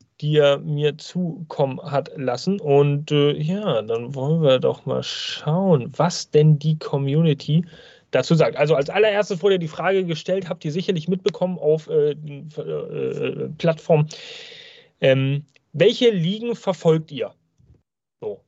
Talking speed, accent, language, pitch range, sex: 140 wpm, German, German, 150-190 Hz, male